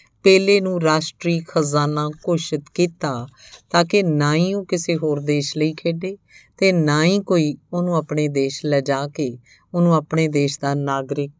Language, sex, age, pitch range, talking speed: Punjabi, female, 50-69, 135-170 Hz, 155 wpm